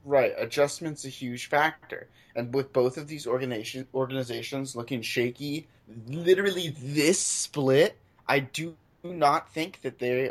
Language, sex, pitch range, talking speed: English, male, 115-140 Hz, 135 wpm